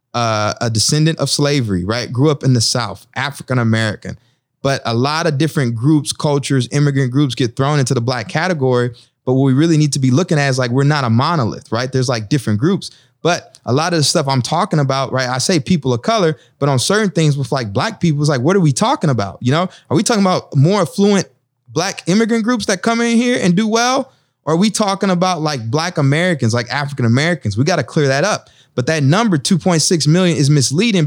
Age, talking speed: 20-39, 230 wpm